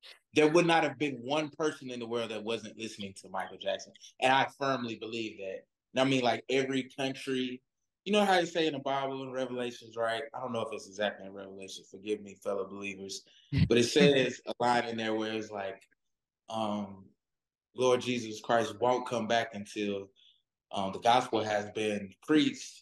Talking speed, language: 195 wpm, English